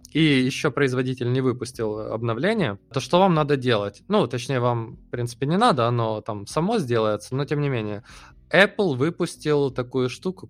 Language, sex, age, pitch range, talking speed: Russian, male, 20-39, 120-150 Hz, 170 wpm